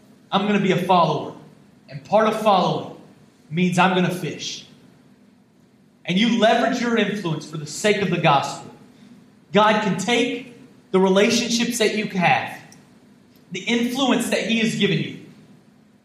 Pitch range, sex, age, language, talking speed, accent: 185-230 Hz, male, 30-49, English, 155 wpm, American